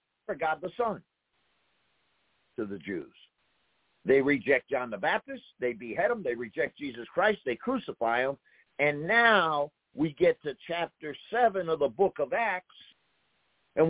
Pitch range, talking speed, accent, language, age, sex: 140-190 Hz, 150 wpm, American, English, 60-79, male